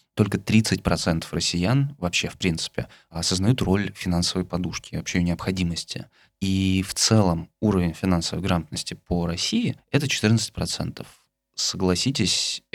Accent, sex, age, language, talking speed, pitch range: native, male, 20-39, Russian, 115 wpm, 90-110 Hz